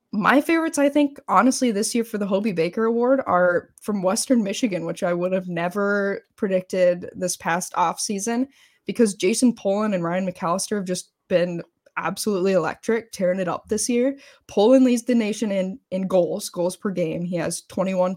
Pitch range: 180-230 Hz